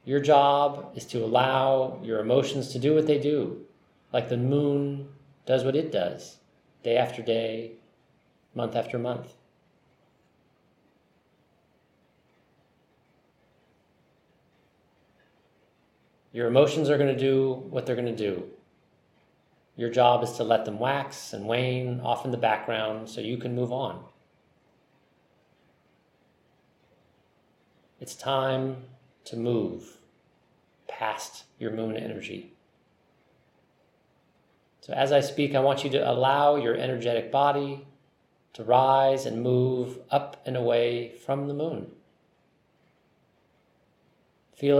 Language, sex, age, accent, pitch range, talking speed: English, male, 40-59, American, 120-140 Hz, 115 wpm